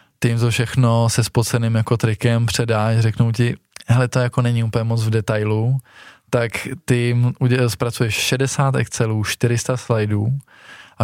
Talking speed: 140 wpm